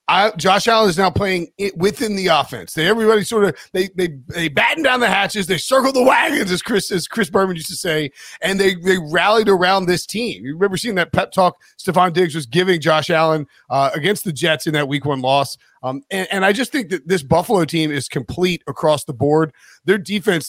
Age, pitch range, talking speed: 40-59, 150-190 Hz, 230 wpm